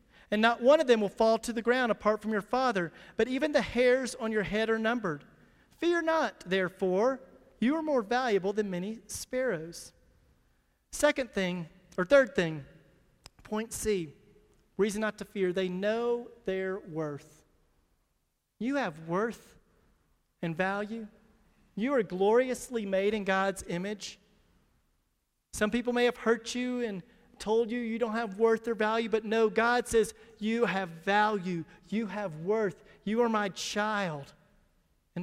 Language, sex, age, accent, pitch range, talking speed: English, male, 40-59, American, 190-235 Hz, 155 wpm